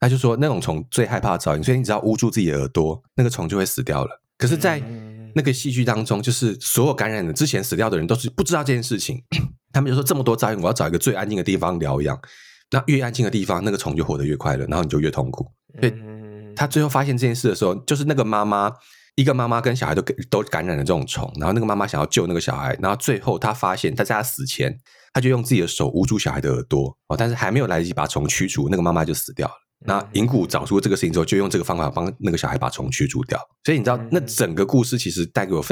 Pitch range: 105-135 Hz